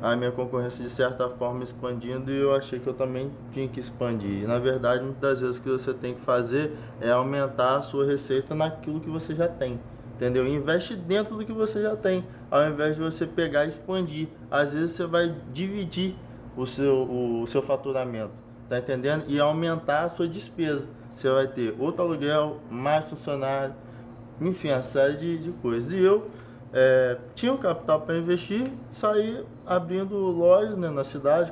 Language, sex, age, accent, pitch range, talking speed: Portuguese, male, 20-39, Brazilian, 125-165 Hz, 185 wpm